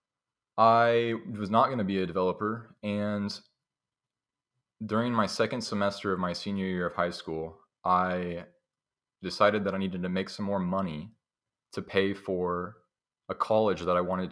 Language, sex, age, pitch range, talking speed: English, male, 30-49, 90-110 Hz, 160 wpm